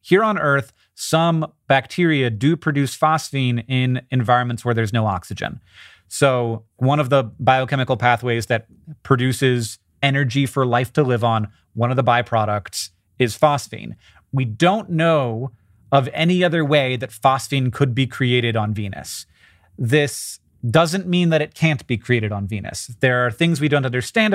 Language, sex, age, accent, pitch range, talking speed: English, male, 30-49, American, 115-150 Hz, 160 wpm